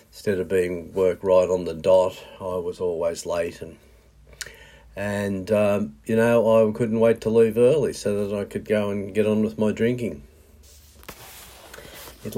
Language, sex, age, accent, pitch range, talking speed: English, male, 50-69, Australian, 95-110 Hz, 170 wpm